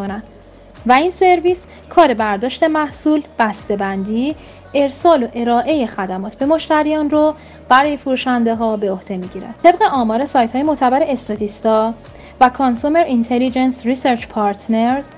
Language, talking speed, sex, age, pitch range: Persian, 125 wpm, female, 30-49, 215-275 Hz